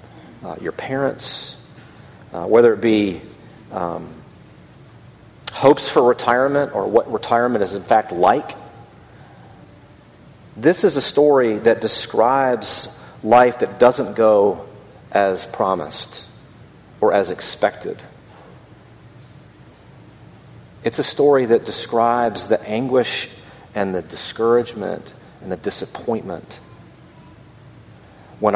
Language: English